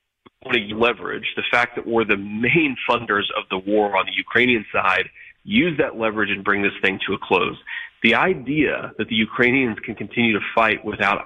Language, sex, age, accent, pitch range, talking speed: English, male, 30-49, American, 100-120 Hz, 185 wpm